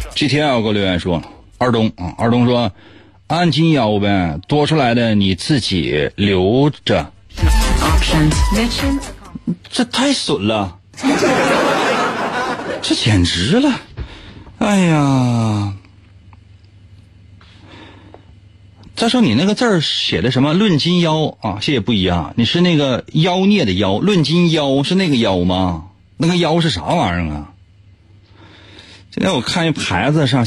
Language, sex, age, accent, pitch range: Chinese, male, 30-49, native, 95-140 Hz